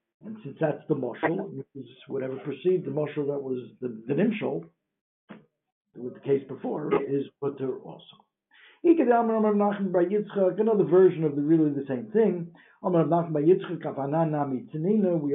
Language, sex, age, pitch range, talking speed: English, male, 60-79, 145-190 Hz, 115 wpm